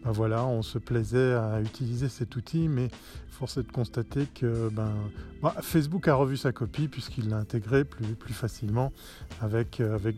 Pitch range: 110-150 Hz